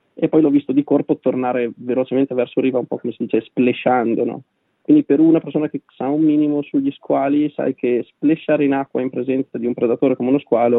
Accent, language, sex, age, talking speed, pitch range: native, Italian, male, 20-39, 220 wpm, 120-140 Hz